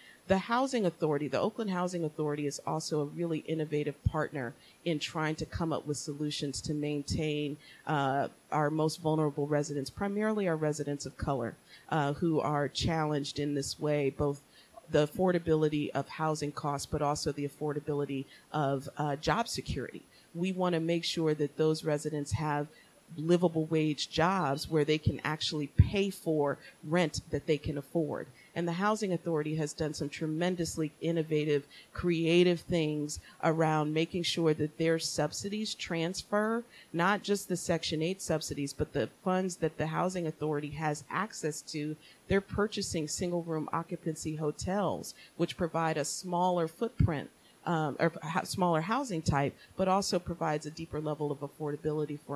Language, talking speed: English, 155 wpm